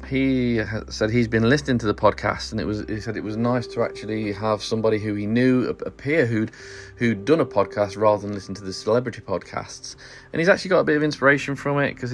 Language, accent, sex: English, British, male